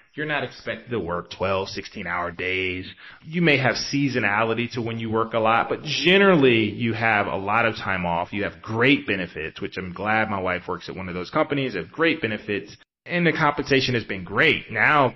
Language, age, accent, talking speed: English, 30-49, American, 210 wpm